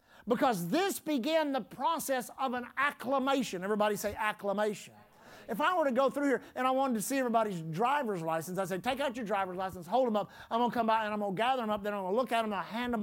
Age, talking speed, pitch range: 50-69, 270 wpm, 225-300 Hz